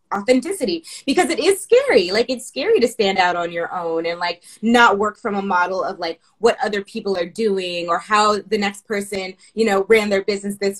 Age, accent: 20-39, American